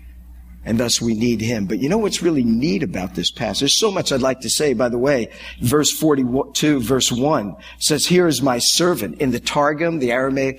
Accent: American